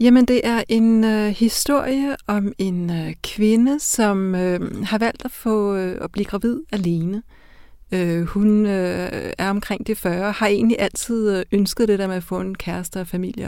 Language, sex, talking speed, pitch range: Danish, female, 155 wpm, 195-230 Hz